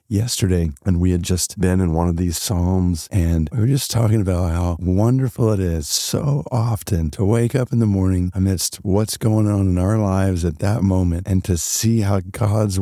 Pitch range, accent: 95-120 Hz, American